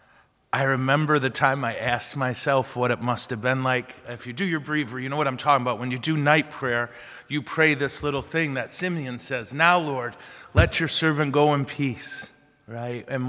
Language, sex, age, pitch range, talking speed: English, male, 30-49, 125-155 Hz, 210 wpm